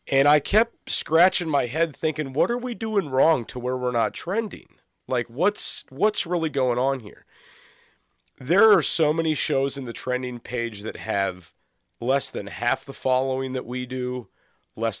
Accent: American